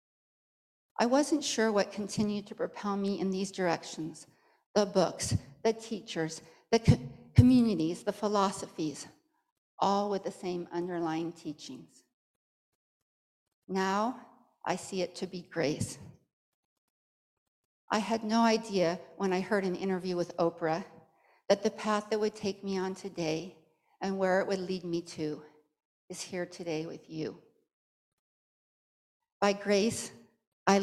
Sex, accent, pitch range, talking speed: female, American, 165-205 Hz, 130 wpm